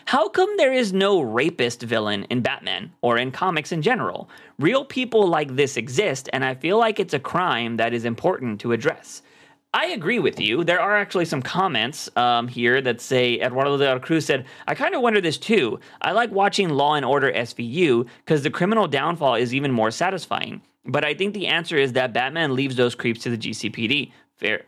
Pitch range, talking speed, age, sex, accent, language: 125-175 Hz, 205 wpm, 30-49, male, American, English